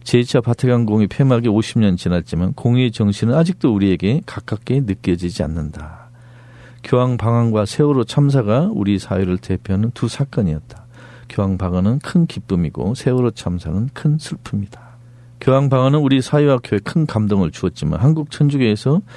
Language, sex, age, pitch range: Korean, male, 50-69, 105-140 Hz